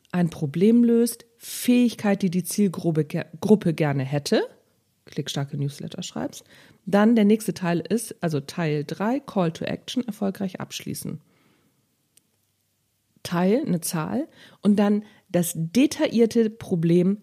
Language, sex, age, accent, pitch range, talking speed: German, female, 50-69, German, 145-205 Hz, 115 wpm